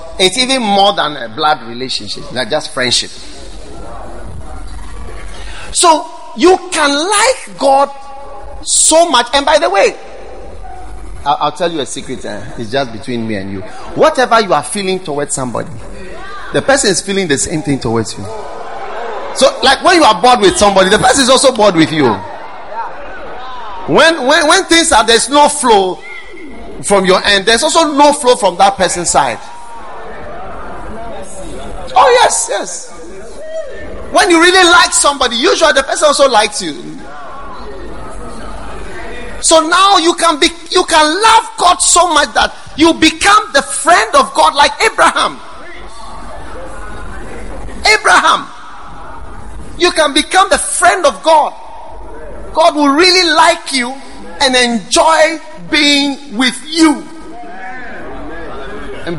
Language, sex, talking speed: English, male, 135 wpm